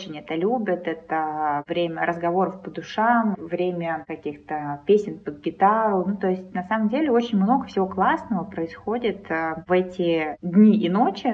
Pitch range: 165-205 Hz